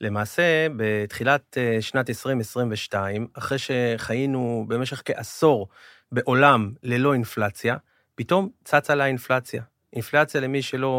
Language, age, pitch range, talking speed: Hebrew, 30-49, 110-140 Hz, 100 wpm